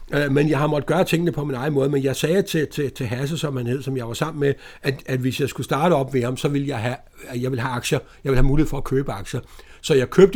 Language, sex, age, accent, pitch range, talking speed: Danish, male, 60-79, native, 125-150 Hz, 305 wpm